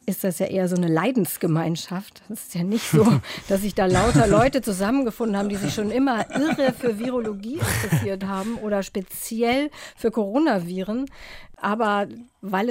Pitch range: 180-225 Hz